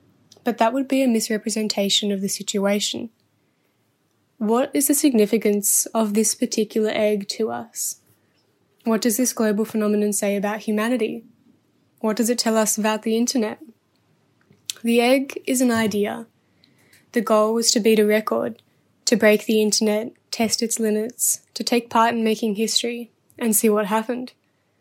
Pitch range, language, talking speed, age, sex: 205-230 Hz, English, 155 wpm, 10-29, female